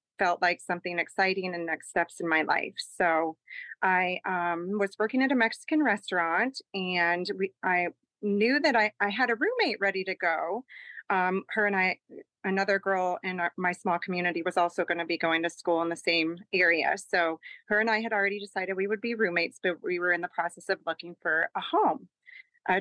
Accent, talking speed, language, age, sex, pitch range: American, 200 wpm, English, 30-49, female, 180-235 Hz